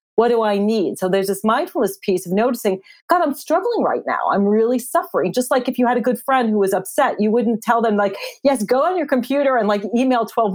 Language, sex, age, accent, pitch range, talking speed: English, female, 40-59, American, 200-245 Hz, 250 wpm